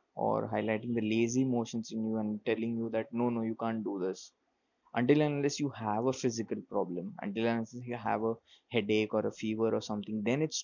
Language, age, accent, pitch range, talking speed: English, 20-39, Indian, 110-130 Hz, 220 wpm